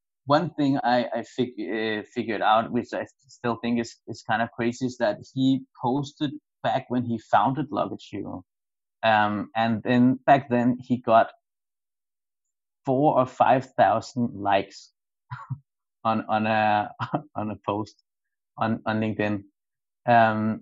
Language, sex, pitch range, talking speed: English, male, 110-130 Hz, 140 wpm